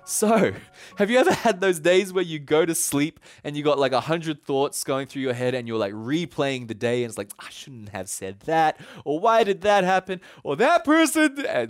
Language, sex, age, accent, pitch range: Japanese, male, 20-39, Australian, 120-200 Hz